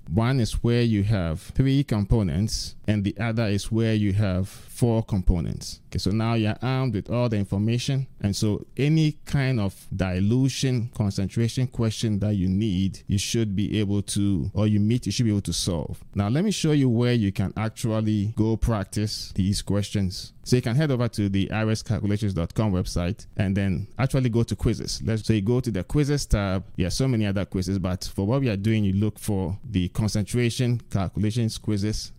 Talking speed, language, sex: 195 wpm, English, male